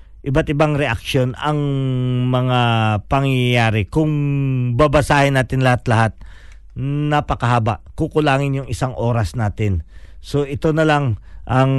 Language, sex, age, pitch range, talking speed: Filipino, male, 50-69, 105-145 Hz, 105 wpm